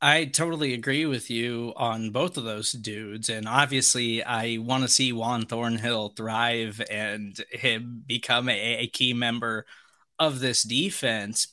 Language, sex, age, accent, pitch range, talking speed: English, male, 20-39, American, 120-155 Hz, 150 wpm